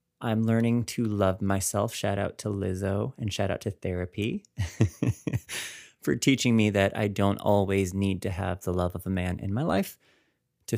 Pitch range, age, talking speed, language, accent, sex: 95-115 Hz, 30-49, 185 wpm, English, American, male